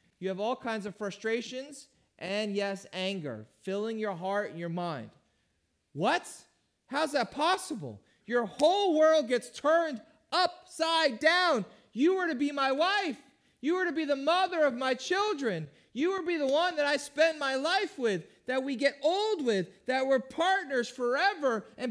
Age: 30-49